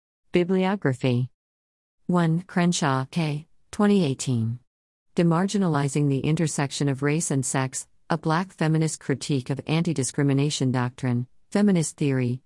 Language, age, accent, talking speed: English, 50-69, American, 100 wpm